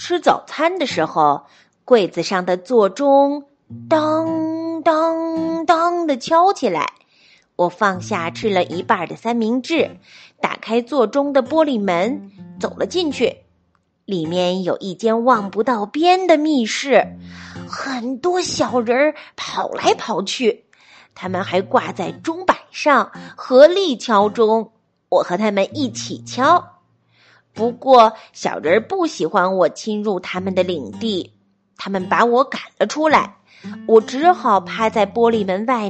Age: 30-49